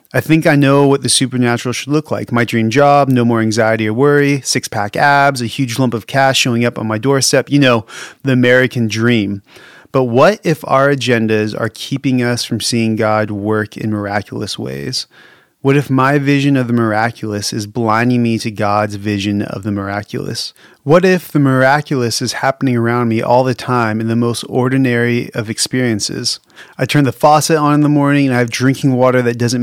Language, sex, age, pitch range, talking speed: English, male, 30-49, 115-140 Hz, 200 wpm